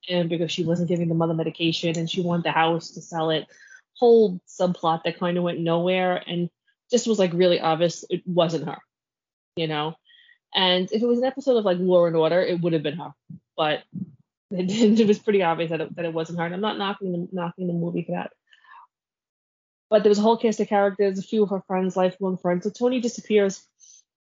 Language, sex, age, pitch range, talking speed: English, female, 20-39, 170-205 Hz, 220 wpm